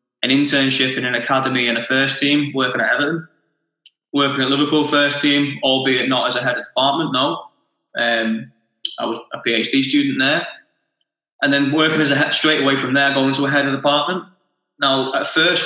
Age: 20-39